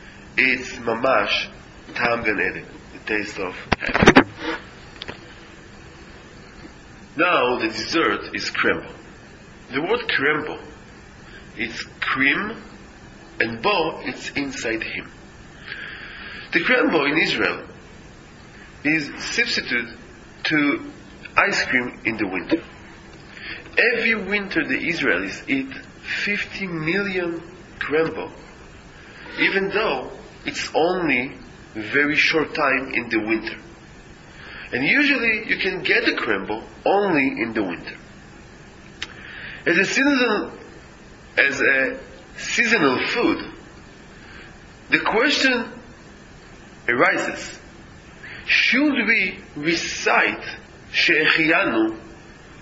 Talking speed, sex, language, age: 85 wpm, male, English, 40-59